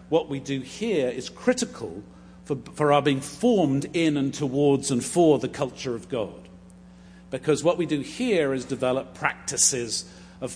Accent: British